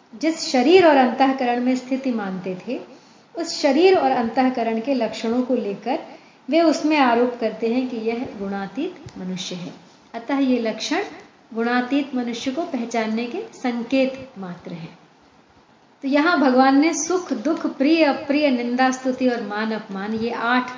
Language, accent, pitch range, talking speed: Hindi, native, 220-275 Hz, 150 wpm